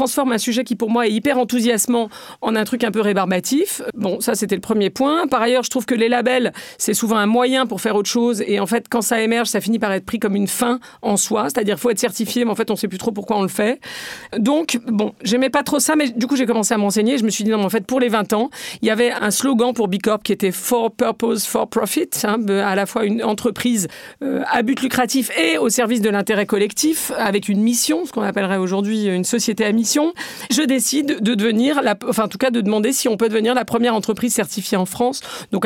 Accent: French